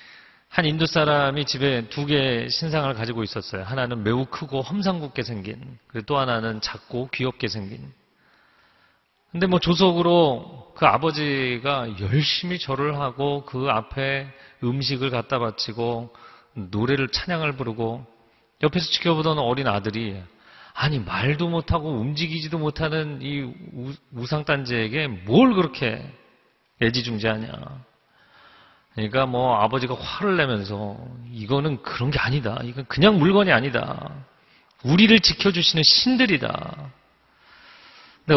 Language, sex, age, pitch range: Korean, male, 40-59, 115-150 Hz